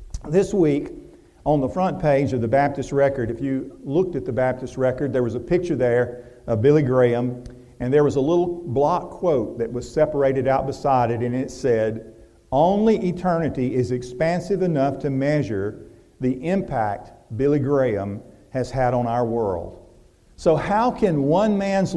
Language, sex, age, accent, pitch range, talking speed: English, male, 50-69, American, 125-175 Hz, 170 wpm